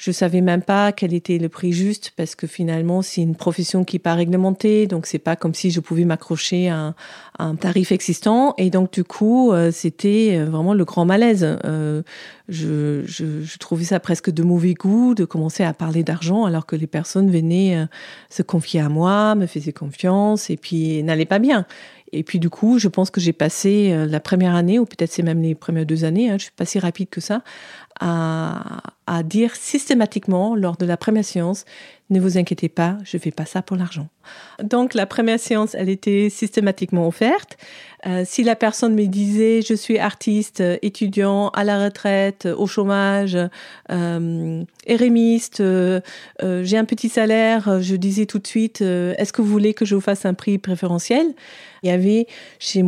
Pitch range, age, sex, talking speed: 170-210 Hz, 40-59, female, 205 wpm